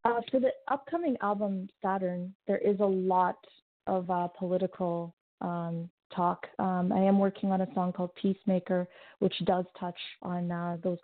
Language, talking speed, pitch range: English, 165 wpm, 180-195 Hz